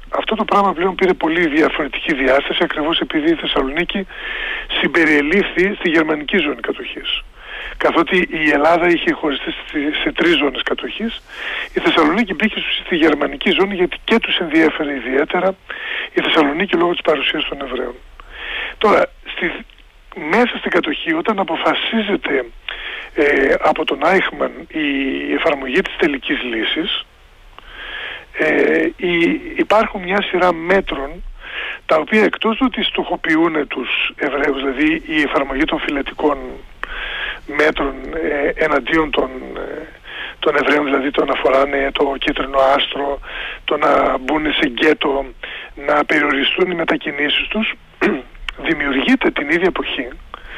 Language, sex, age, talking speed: Greek, male, 20-39, 125 wpm